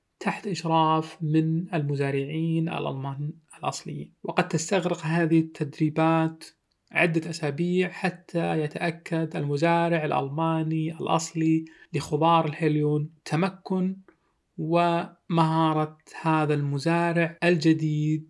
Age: 30-49